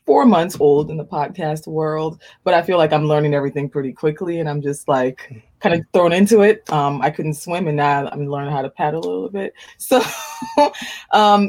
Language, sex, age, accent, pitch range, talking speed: English, female, 20-39, American, 150-195 Hz, 215 wpm